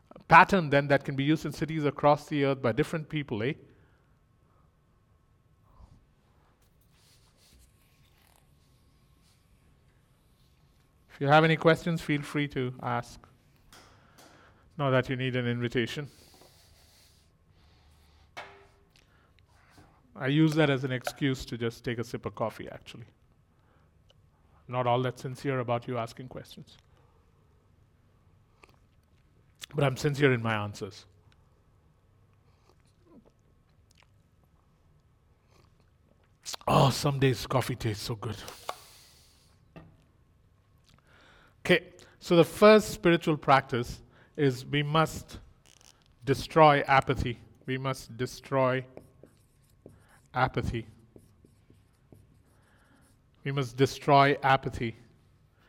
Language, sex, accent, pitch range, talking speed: English, male, Indian, 105-140 Hz, 90 wpm